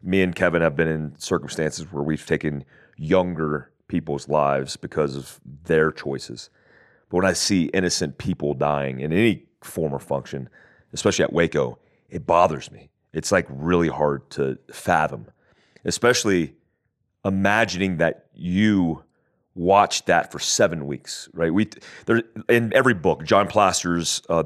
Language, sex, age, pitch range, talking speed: English, male, 30-49, 75-95 Hz, 145 wpm